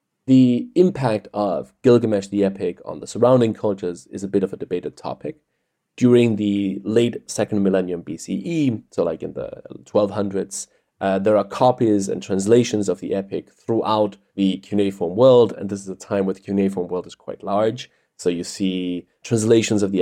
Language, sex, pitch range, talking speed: English, male, 95-120 Hz, 175 wpm